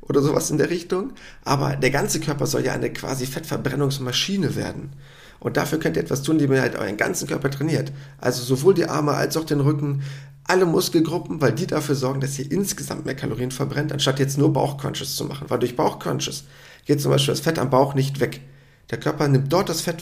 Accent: German